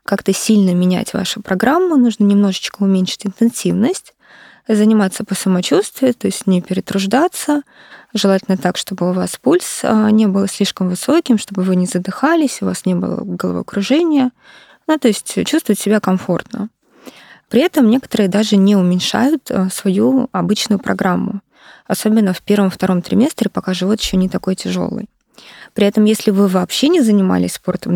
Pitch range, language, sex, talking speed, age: 190-235 Hz, Russian, female, 145 wpm, 20-39